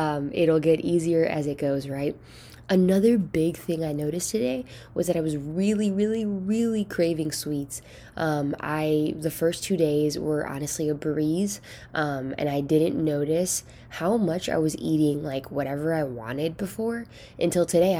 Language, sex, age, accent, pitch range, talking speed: English, female, 10-29, American, 140-160 Hz, 165 wpm